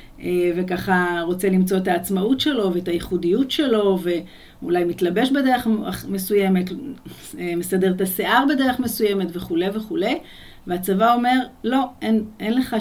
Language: Hebrew